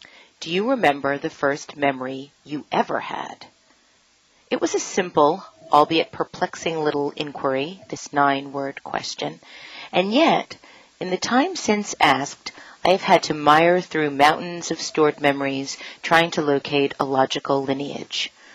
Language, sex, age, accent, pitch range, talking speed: English, female, 40-59, American, 140-170 Hz, 140 wpm